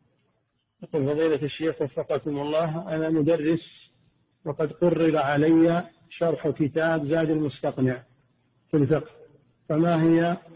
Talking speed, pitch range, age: 95 wpm, 150-165 Hz, 50-69